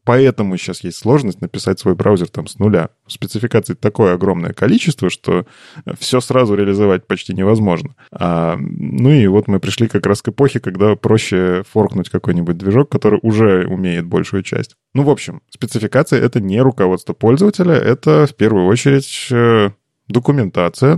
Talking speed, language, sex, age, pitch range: 150 wpm, Russian, male, 20-39, 95-125 Hz